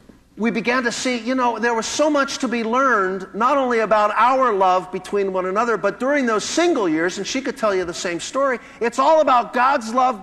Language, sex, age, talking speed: English, male, 50-69, 230 wpm